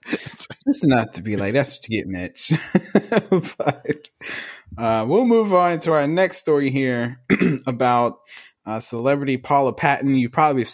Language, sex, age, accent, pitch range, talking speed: English, male, 20-39, American, 115-145 Hz, 145 wpm